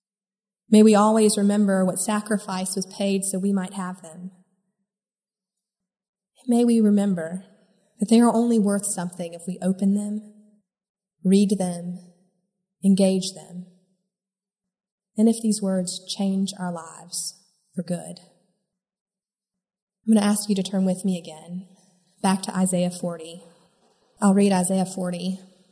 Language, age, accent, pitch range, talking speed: English, 20-39, American, 185-210 Hz, 135 wpm